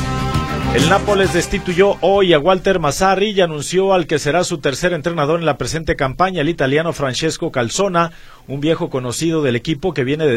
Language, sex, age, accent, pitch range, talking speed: Spanish, male, 40-59, Mexican, 125-165 Hz, 180 wpm